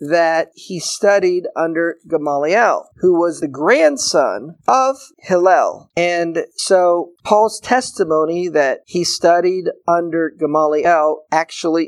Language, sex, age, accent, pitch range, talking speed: English, male, 50-69, American, 155-195 Hz, 105 wpm